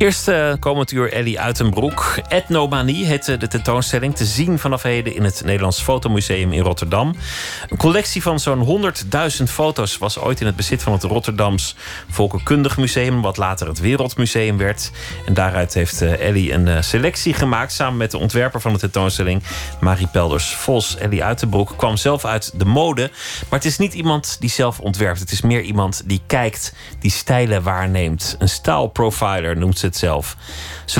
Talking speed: 170 wpm